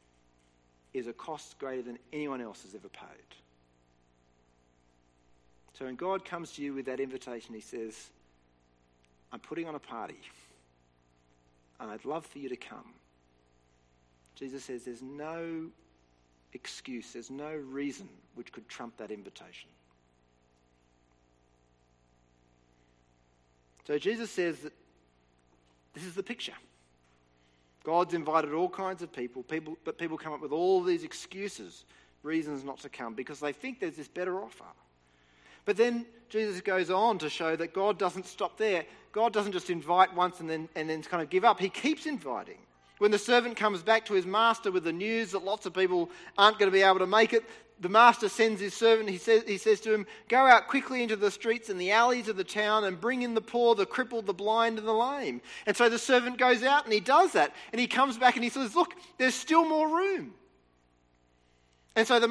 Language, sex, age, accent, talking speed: English, male, 40-59, Australian, 185 wpm